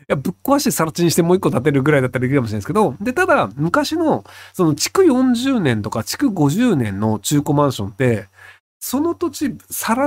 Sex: male